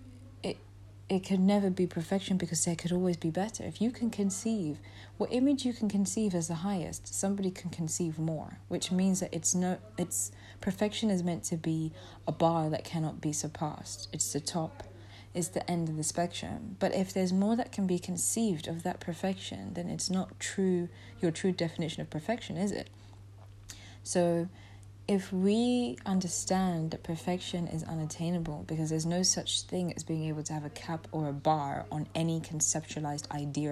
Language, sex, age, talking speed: English, female, 20-39, 180 wpm